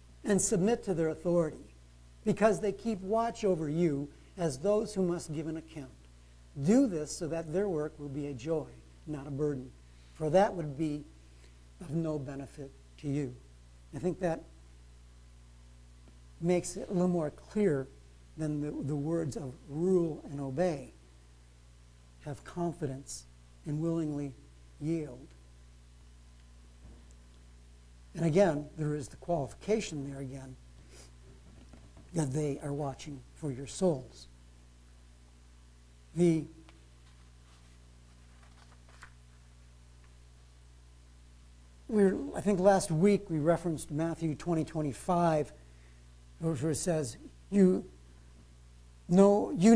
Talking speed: 115 wpm